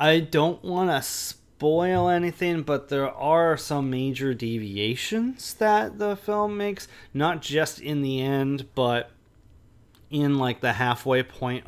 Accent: American